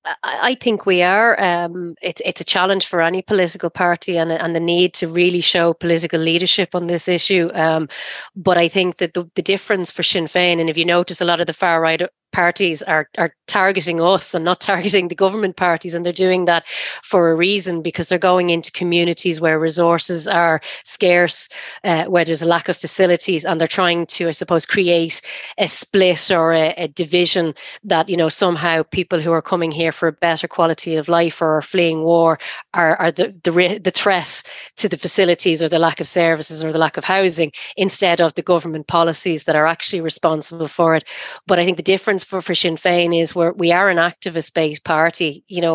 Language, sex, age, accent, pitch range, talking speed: English, female, 30-49, Irish, 165-180 Hz, 210 wpm